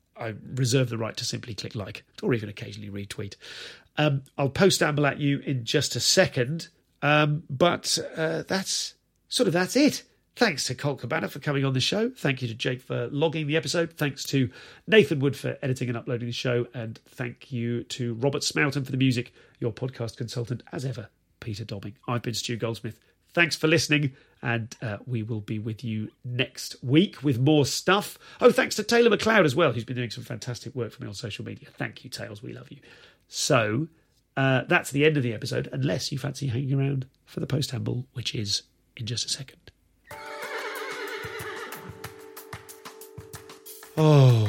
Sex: male